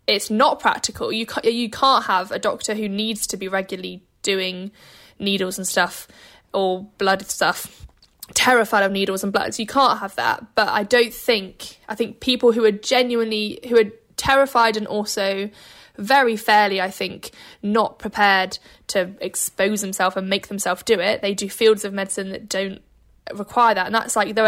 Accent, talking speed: British, 180 wpm